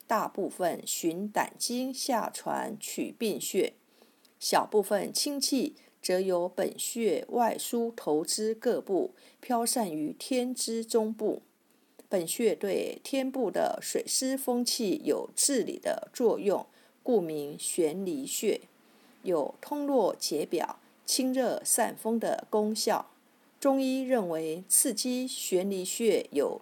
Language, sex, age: Chinese, female, 50-69